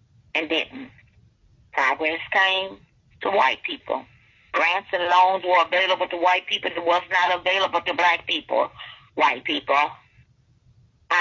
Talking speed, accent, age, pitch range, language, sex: 130 wpm, American, 50-69, 115-185 Hz, English, female